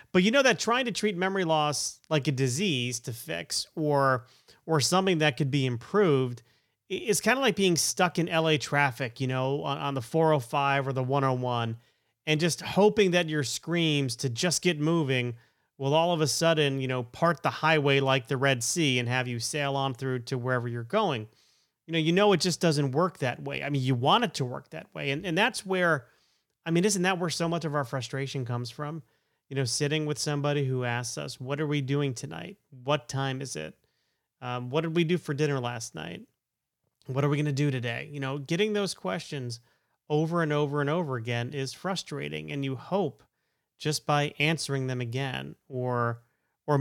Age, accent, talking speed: 30-49, American, 210 wpm